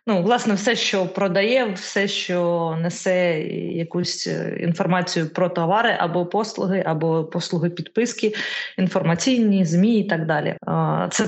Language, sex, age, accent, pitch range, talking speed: Ukrainian, female, 20-39, native, 175-210 Hz, 115 wpm